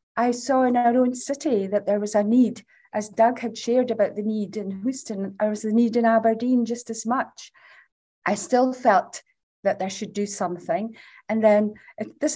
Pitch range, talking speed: 200-245 Hz, 195 wpm